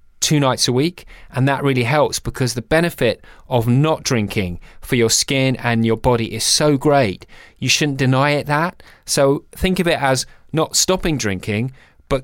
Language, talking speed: English, 180 wpm